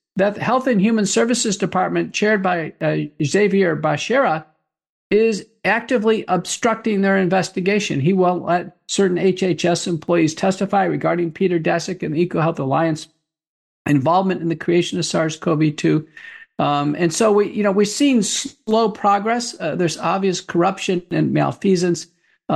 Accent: American